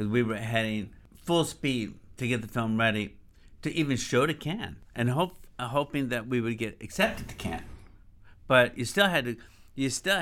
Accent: American